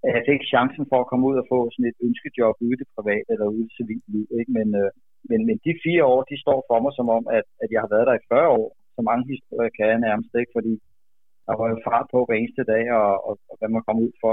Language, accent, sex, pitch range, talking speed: Danish, native, male, 110-135 Hz, 270 wpm